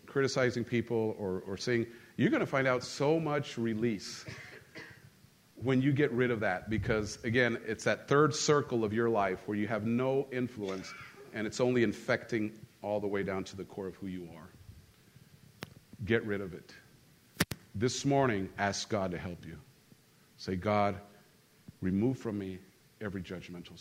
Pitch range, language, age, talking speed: 105-130 Hz, English, 50-69, 165 wpm